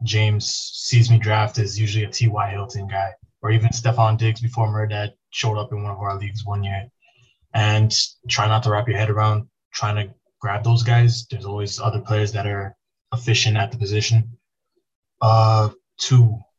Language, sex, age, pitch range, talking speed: English, male, 20-39, 105-115 Hz, 180 wpm